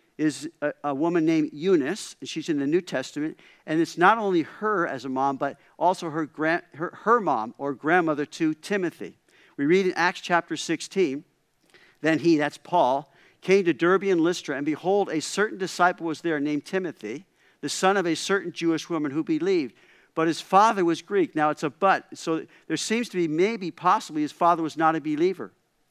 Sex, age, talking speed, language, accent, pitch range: male, 50-69, 195 wpm, English, American, 155-190 Hz